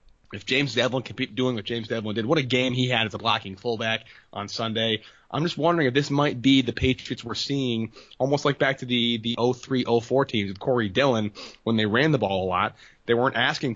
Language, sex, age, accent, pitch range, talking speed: English, male, 20-39, American, 110-140 Hz, 235 wpm